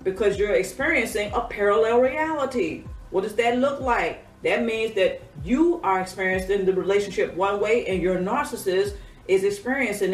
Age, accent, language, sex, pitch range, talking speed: 40-59, American, English, female, 185-265 Hz, 155 wpm